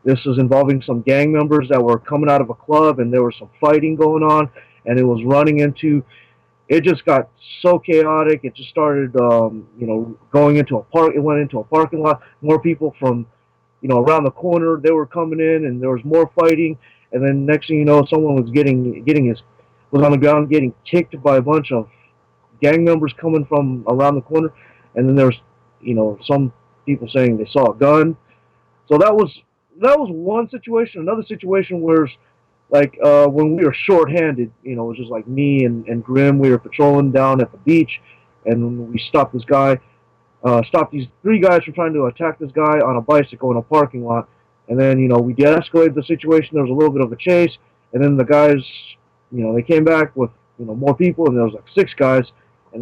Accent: American